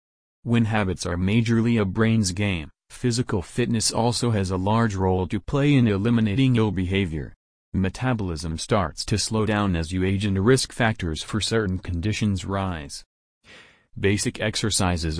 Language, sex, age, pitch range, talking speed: English, male, 40-59, 90-110 Hz, 145 wpm